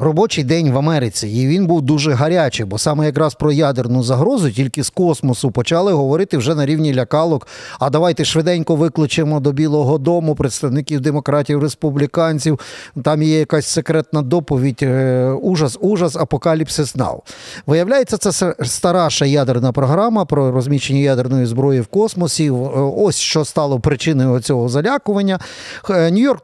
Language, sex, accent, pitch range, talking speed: Ukrainian, male, native, 135-165 Hz, 140 wpm